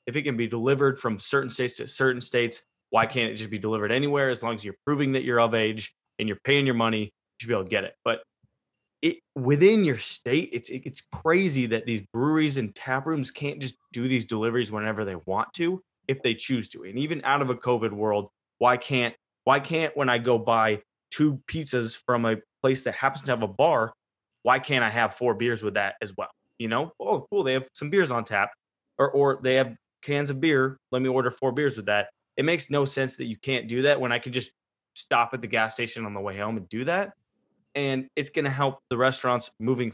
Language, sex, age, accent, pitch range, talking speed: English, male, 20-39, American, 115-135 Hz, 235 wpm